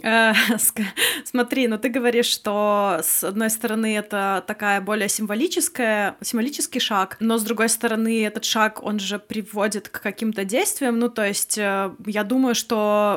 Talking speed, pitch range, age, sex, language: 155 wpm, 195-230 Hz, 20-39, female, Russian